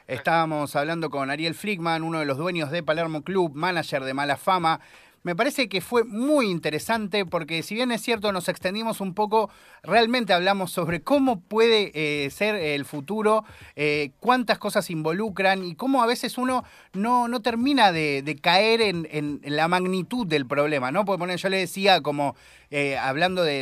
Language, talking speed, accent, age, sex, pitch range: Spanish, 180 wpm, Argentinian, 30-49, male, 150-210 Hz